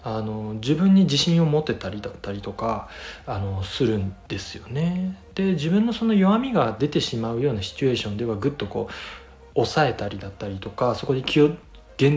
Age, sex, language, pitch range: 20-39, male, Japanese, 105-145 Hz